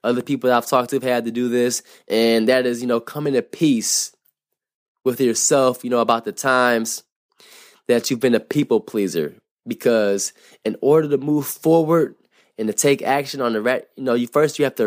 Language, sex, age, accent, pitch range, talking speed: English, male, 20-39, American, 110-130 Hz, 210 wpm